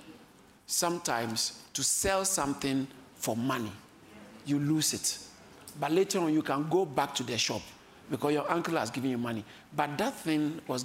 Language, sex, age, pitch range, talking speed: English, male, 50-69, 135-185 Hz, 165 wpm